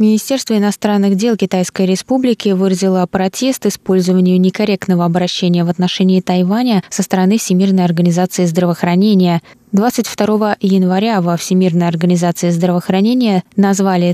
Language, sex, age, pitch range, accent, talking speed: Russian, female, 20-39, 180-215 Hz, native, 105 wpm